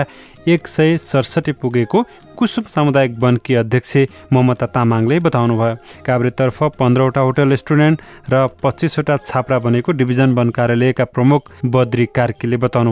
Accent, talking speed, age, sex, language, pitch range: Indian, 135 wpm, 30-49, male, English, 120-145 Hz